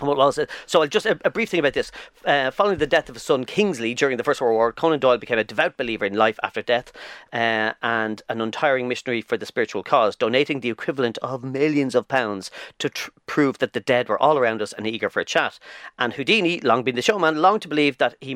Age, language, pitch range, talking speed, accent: 40-59, English, 120-145 Hz, 235 wpm, Irish